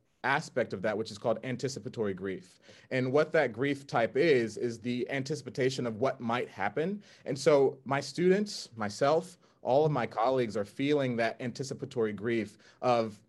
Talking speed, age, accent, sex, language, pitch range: 165 wpm, 30-49, American, male, English, 110-150 Hz